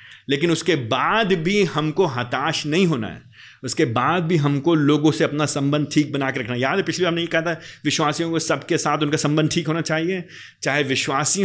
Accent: native